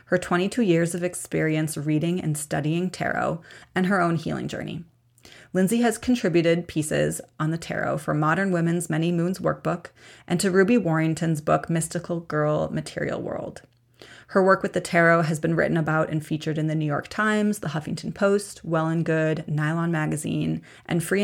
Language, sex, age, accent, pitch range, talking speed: English, female, 30-49, American, 155-180 Hz, 175 wpm